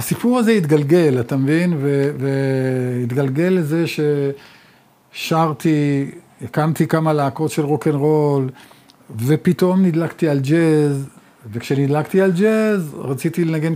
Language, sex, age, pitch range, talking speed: Hebrew, male, 50-69, 140-175 Hz, 95 wpm